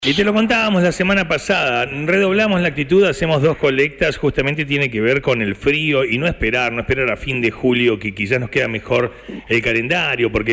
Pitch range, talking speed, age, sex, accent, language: 120-170 Hz, 210 wpm, 40-59, male, Argentinian, Spanish